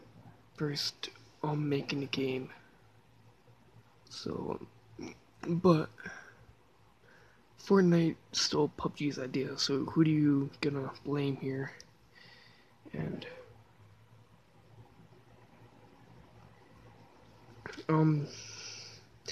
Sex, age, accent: male, 20-39, American